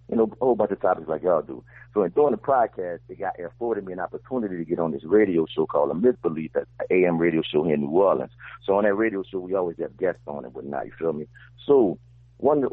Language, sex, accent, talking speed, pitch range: English, male, American, 255 wpm, 85-115 Hz